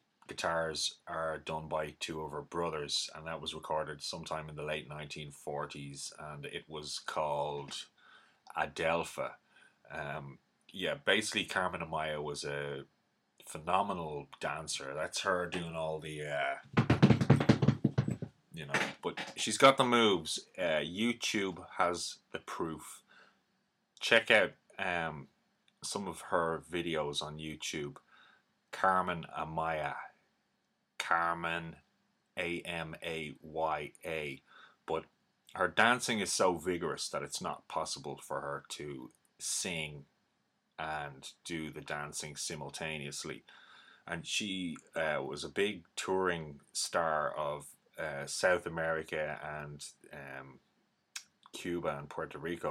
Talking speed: 115 wpm